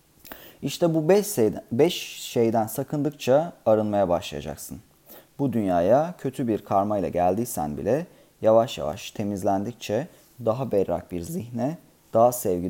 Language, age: Turkish, 30-49